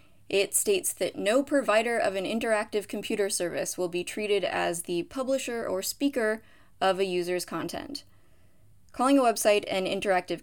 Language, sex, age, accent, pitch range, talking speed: English, female, 20-39, American, 175-215 Hz, 155 wpm